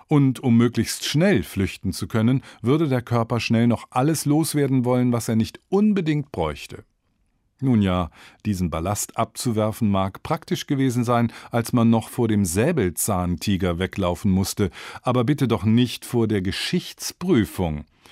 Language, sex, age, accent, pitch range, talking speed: German, male, 50-69, German, 90-130 Hz, 145 wpm